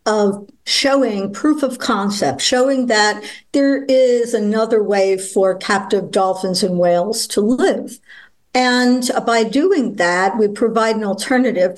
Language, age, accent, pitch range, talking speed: English, 60-79, American, 200-250 Hz, 130 wpm